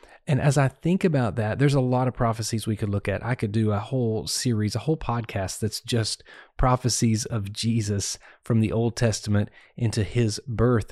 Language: English